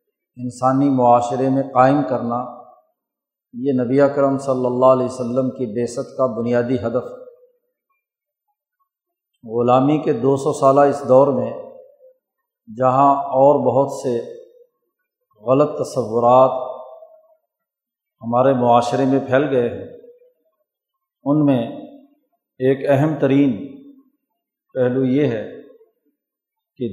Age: 50-69